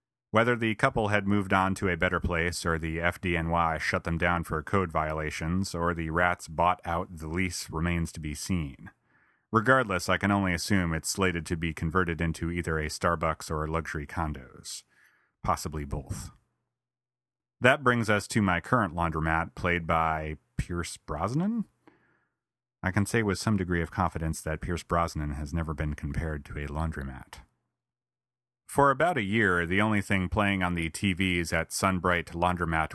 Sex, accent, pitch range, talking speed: male, American, 80-100 Hz, 170 wpm